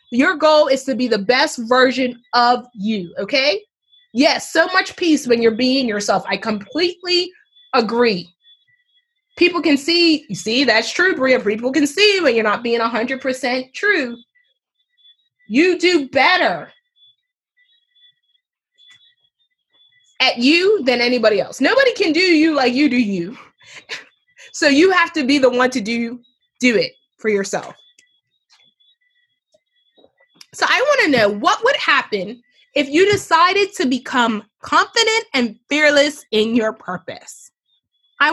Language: English